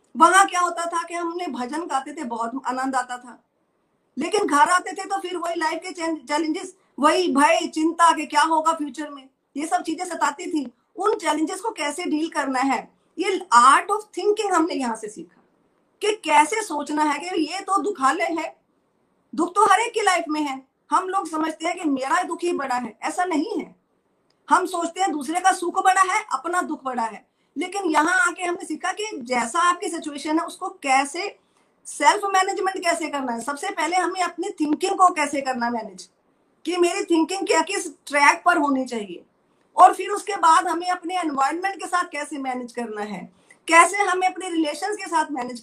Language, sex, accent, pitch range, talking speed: Hindi, female, native, 290-365 Hz, 150 wpm